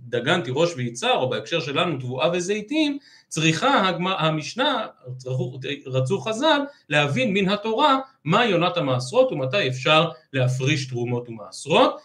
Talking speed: 125 wpm